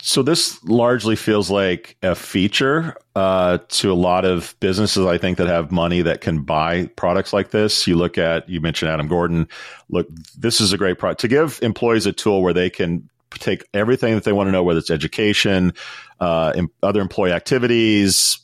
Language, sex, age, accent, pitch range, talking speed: English, male, 40-59, American, 80-105 Hz, 195 wpm